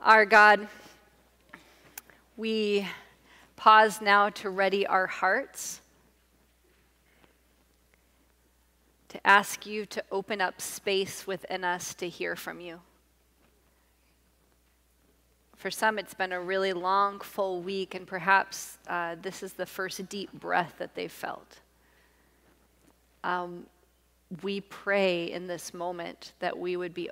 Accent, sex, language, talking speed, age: American, female, English, 115 wpm, 30-49